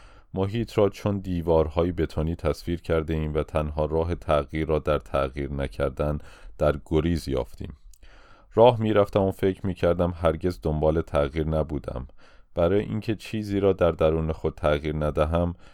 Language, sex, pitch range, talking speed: Persian, male, 80-95 Hz, 140 wpm